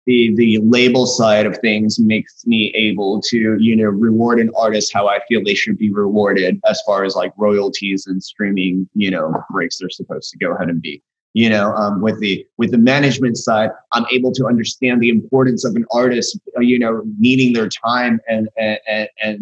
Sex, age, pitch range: male, 20-39, 100-125 Hz